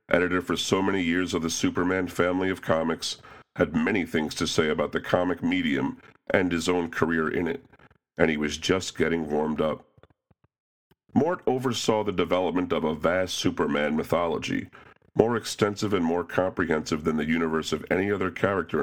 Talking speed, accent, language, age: 170 wpm, American, English, 40-59